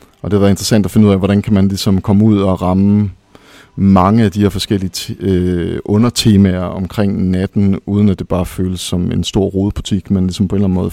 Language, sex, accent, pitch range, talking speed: Danish, male, native, 95-105 Hz, 230 wpm